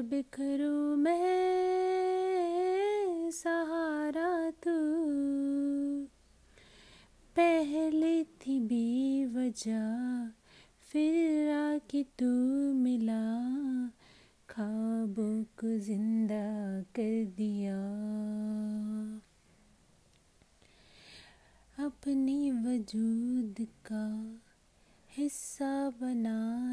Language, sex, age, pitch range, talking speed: Hindi, female, 30-49, 220-300 Hz, 45 wpm